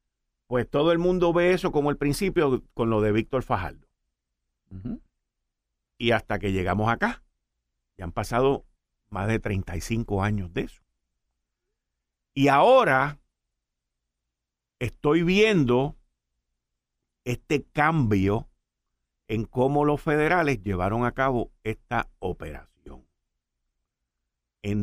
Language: Spanish